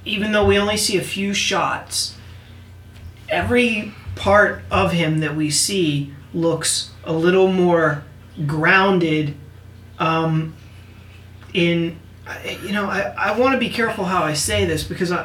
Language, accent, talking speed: English, American, 140 wpm